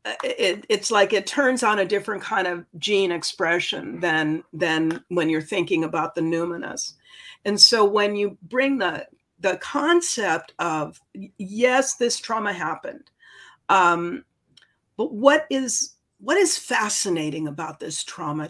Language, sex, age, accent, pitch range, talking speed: English, female, 50-69, American, 175-235 Hz, 140 wpm